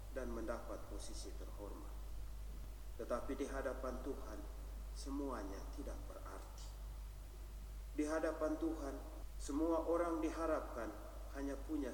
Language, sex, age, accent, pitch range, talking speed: Indonesian, male, 40-59, native, 105-130 Hz, 95 wpm